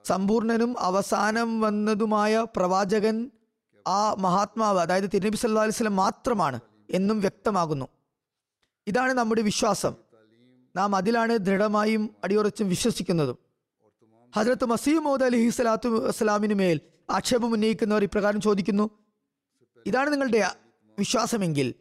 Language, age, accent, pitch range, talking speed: Malayalam, 20-39, native, 190-230 Hz, 90 wpm